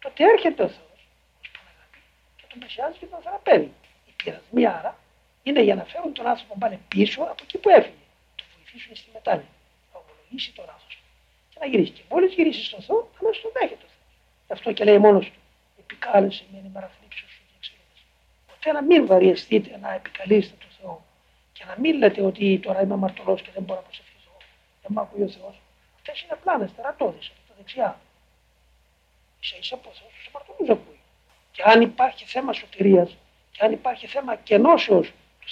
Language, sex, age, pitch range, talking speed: Greek, male, 60-79, 195-310 Hz, 165 wpm